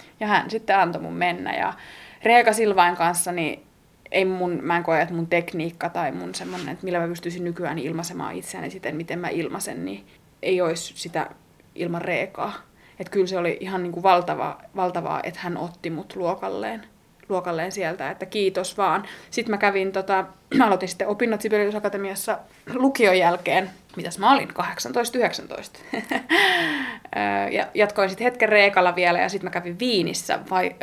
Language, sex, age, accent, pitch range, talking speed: Finnish, female, 20-39, native, 175-205 Hz, 165 wpm